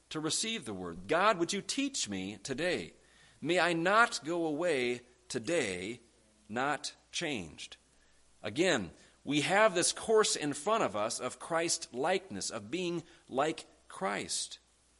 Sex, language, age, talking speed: male, English, 40-59, 130 wpm